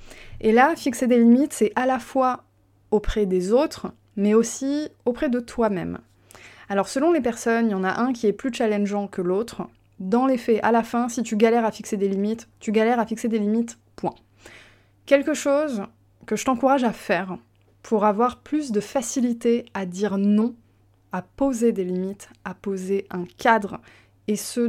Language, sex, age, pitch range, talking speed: French, female, 20-39, 190-240 Hz, 185 wpm